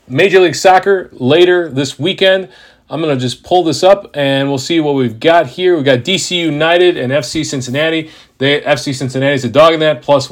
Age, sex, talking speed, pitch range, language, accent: 40-59, male, 210 wpm, 135-175 Hz, English, American